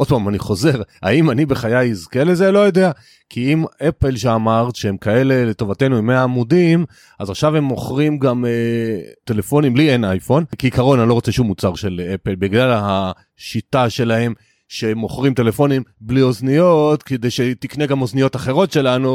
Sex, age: male, 30-49